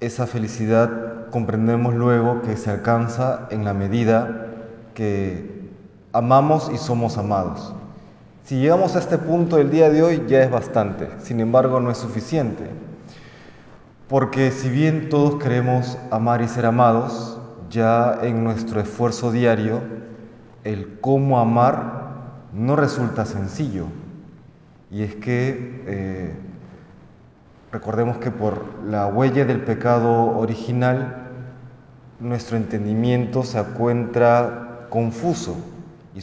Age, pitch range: 30-49, 110-130 Hz